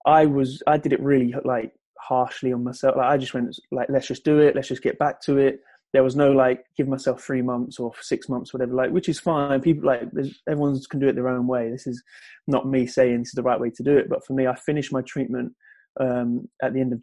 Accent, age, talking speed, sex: British, 20-39, 260 wpm, male